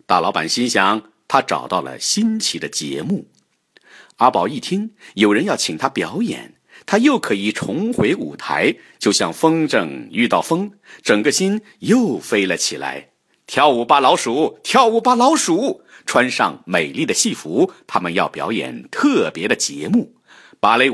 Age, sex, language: 50-69, male, Chinese